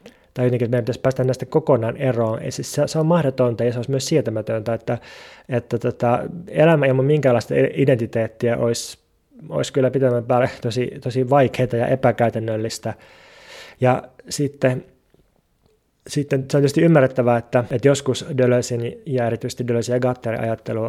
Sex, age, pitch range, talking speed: male, 20-39, 115-130 Hz, 150 wpm